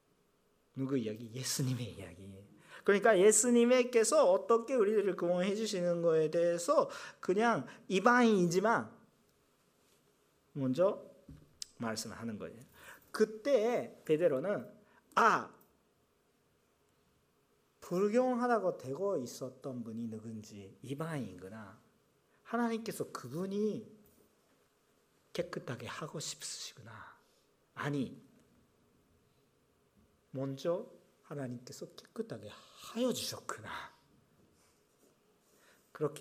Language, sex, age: Korean, male, 40-59